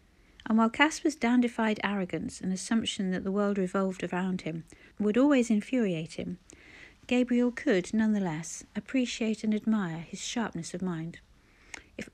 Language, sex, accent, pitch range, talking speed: English, female, British, 180-240 Hz, 140 wpm